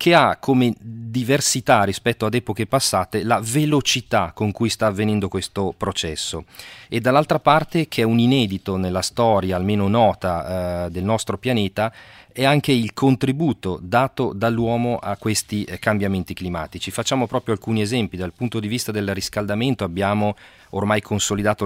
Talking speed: 150 wpm